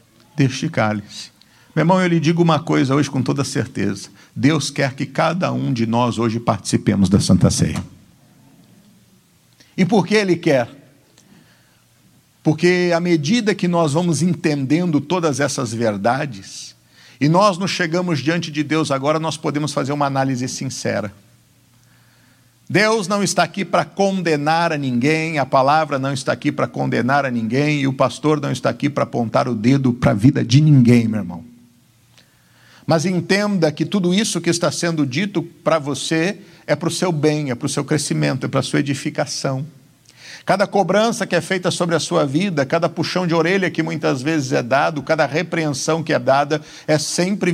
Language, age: Portuguese, 50-69